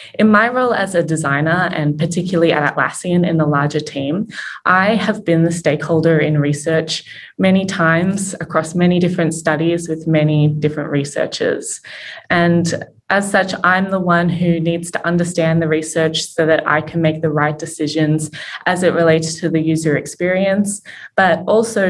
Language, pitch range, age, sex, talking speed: English, 155-175 Hz, 20-39, female, 165 wpm